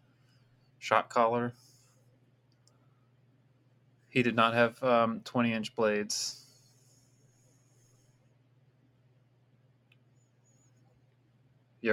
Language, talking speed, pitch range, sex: English, 50 wpm, 115-125 Hz, male